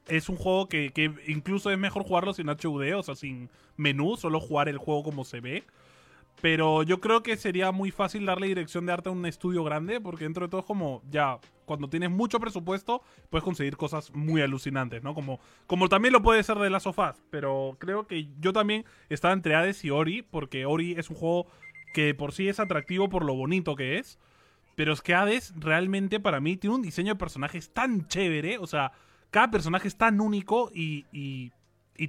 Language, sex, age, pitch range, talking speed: Spanish, male, 20-39, 150-200 Hz, 210 wpm